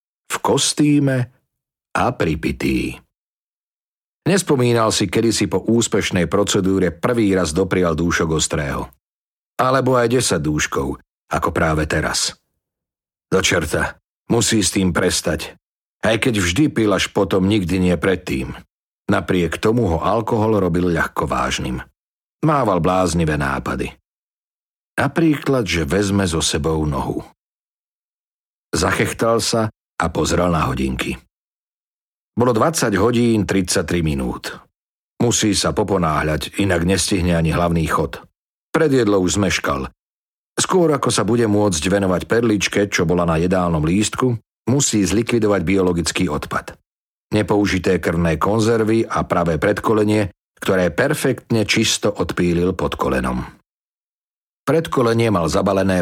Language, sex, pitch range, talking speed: Slovak, male, 85-110 Hz, 115 wpm